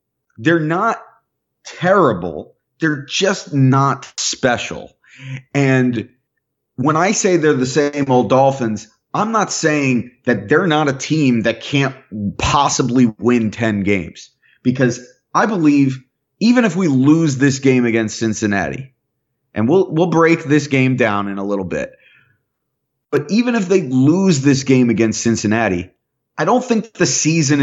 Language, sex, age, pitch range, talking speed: English, male, 30-49, 110-145 Hz, 145 wpm